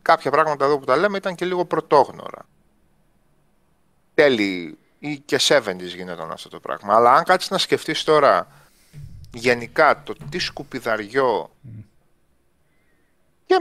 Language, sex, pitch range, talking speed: Greek, male, 120-170 Hz, 130 wpm